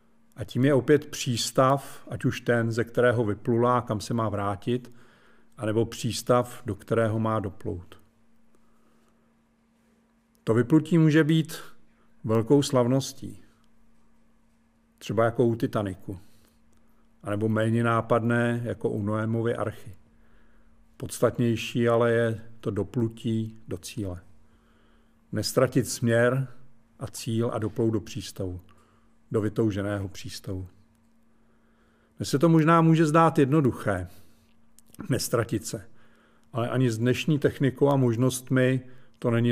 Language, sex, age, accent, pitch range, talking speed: Czech, male, 50-69, native, 110-125 Hz, 110 wpm